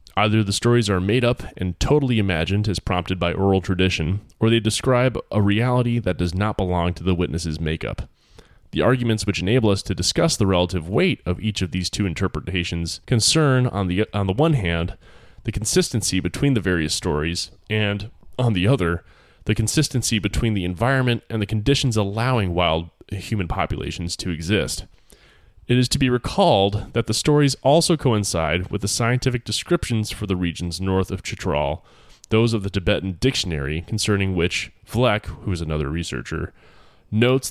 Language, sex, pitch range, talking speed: English, male, 90-120 Hz, 170 wpm